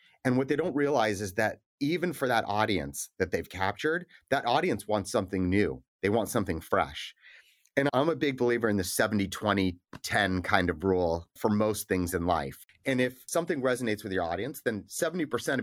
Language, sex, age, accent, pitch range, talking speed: English, male, 30-49, American, 100-130 Hz, 190 wpm